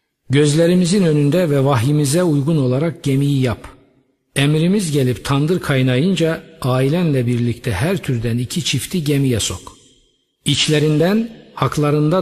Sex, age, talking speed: male, 50-69, 110 wpm